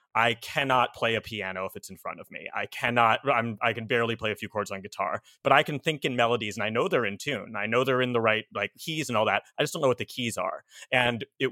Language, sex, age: English, male, 30-49